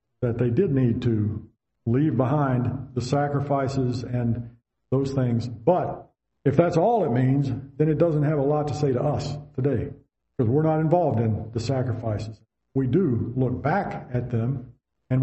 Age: 50-69